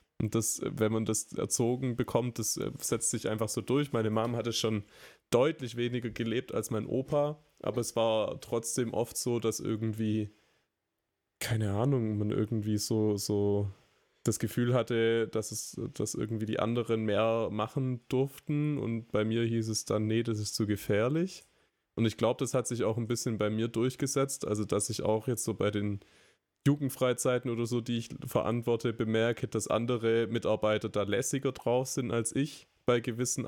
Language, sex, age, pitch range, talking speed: German, male, 20-39, 110-125 Hz, 175 wpm